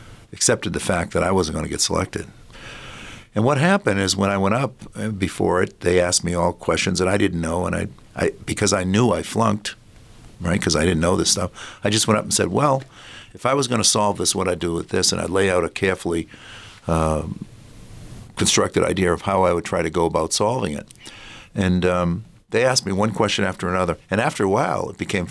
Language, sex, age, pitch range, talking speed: English, male, 60-79, 90-110 Hz, 225 wpm